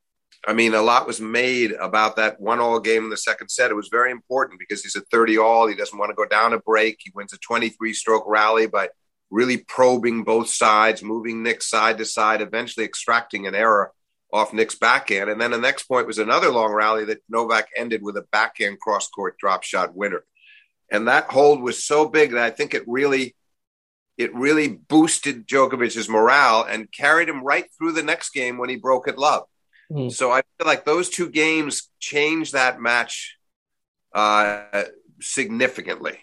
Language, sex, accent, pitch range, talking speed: English, male, American, 105-125 Hz, 185 wpm